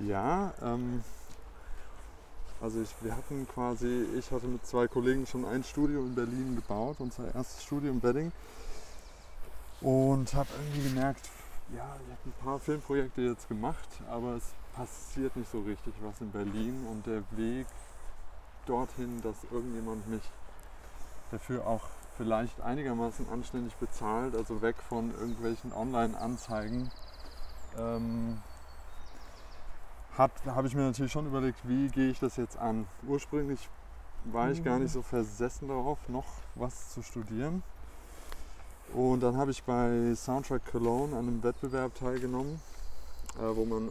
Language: German